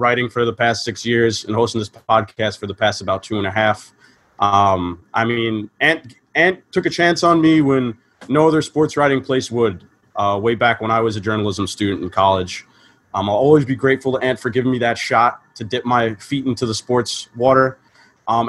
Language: English